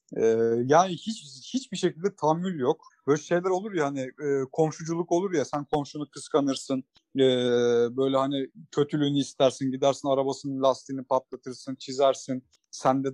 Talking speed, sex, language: 135 wpm, male, Turkish